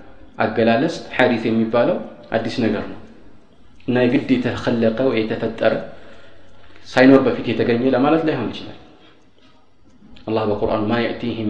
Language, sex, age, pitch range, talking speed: Amharic, male, 40-59, 105-125 Hz, 100 wpm